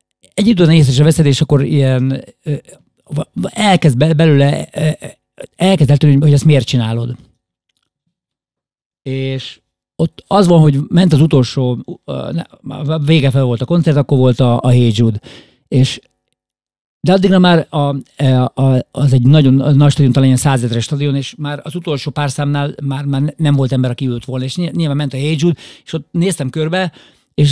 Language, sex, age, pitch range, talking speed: Hungarian, male, 50-69, 130-160 Hz, 155 wpm